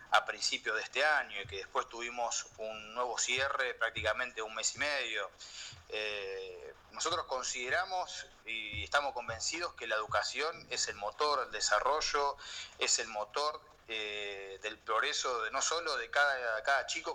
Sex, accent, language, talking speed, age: male, Argentinian, Spanish, 160 wpm, 30-49